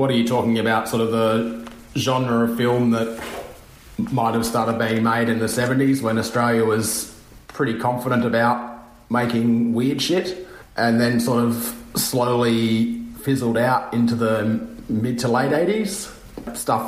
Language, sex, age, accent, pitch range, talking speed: English, male, 30-49, Australian, 110-125 Hz, 155 wpm